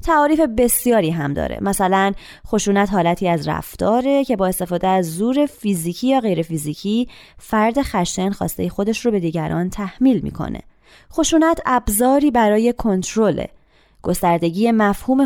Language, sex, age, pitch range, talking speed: Persian, female, 20-39, 185-250 Hz, 130 wpm